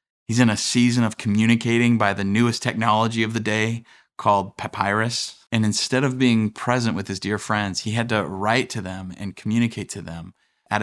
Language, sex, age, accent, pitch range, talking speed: English, male, 30-49, American, 100-120 Hz, 195 wpm